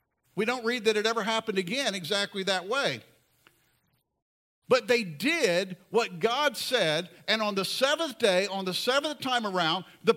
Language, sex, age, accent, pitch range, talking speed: English, male, 50-69, American, 175-235 Hz, 165 wpm